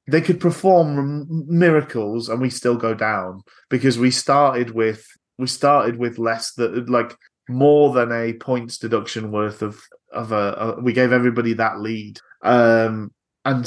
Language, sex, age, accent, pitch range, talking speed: English, male, 30-49, British, 110-130 Hz, 160 wpm